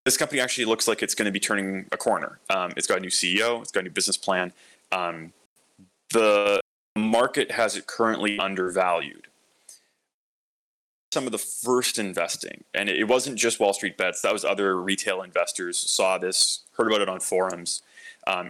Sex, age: male, 20-39